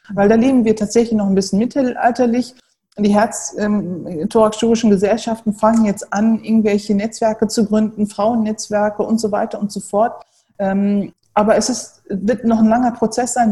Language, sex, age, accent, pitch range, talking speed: German, female, 40-59, German, 200-230 Hz, 160 wpm